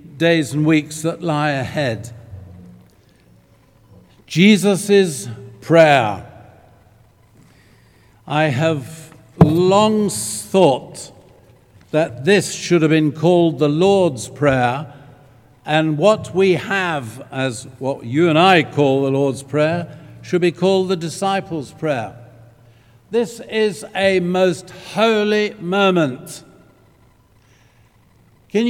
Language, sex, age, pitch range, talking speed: English, male, 60-79, 120-180 Hz, 100 wpm